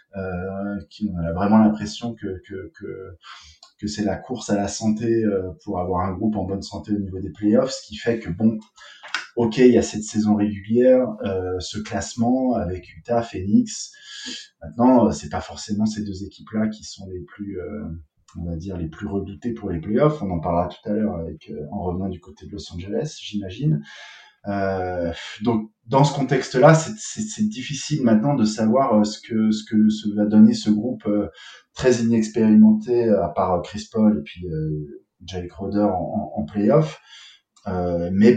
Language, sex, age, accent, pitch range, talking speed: French, male, 20-39, French, 90-115 Hz, 185 wpm